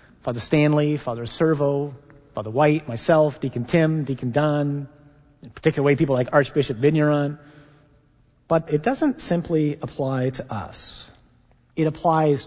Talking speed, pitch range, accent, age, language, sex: 130 wpm, 135-185 Hz, American, 40-59, English, male